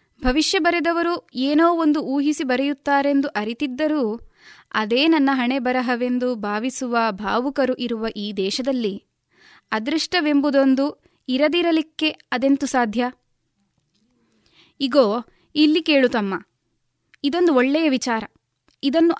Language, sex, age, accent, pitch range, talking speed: Kannada, female, 20-39, native, 245-300 Hz, 90 wpm